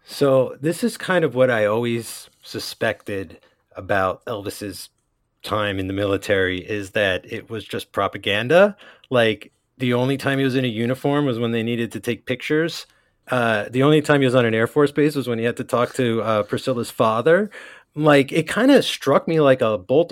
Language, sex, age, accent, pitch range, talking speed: English, male, 30-49, American, 120-155 Hz, 200 wpm